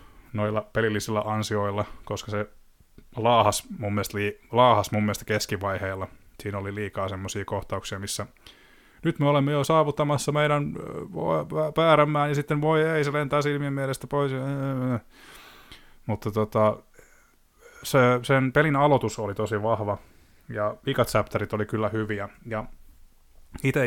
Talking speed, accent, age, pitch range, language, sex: 130 wpm, native, 20-39, 100-130 Hz, Finnish, male